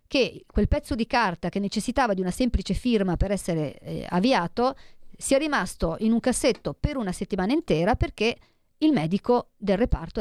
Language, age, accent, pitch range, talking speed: Italian, 40-59, native, 190-235 Hz, 175 wpm